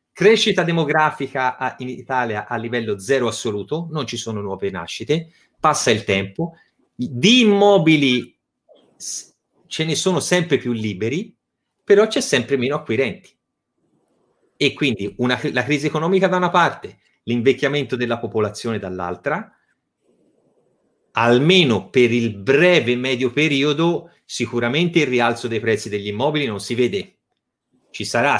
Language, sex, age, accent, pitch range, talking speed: Italian, male, 30-49, native, 110-150 Hz, 125 wpm